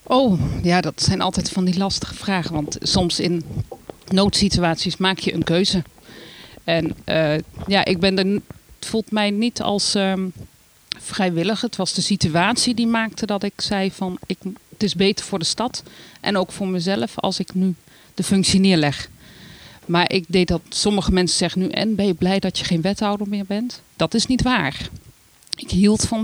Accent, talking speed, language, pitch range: Dutch, 190 wpm, Dutch, 170-205 Hz